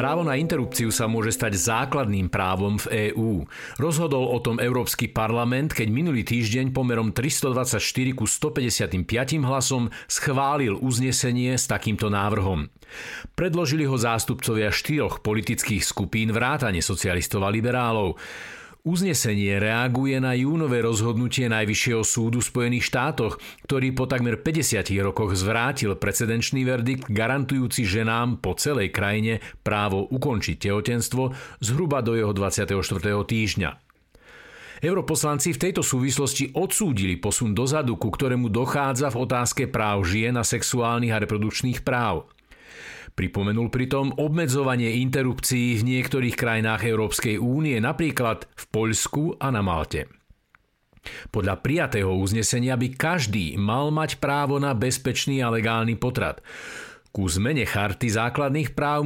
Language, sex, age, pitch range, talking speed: Slovak, male, 50-69, 105-135 Hz, 125 wpm